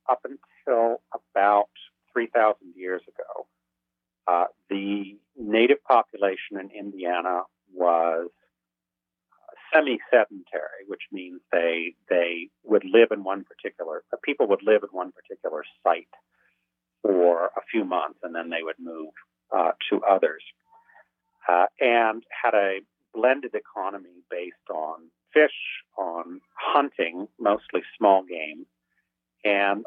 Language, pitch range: English, 85-105 Hz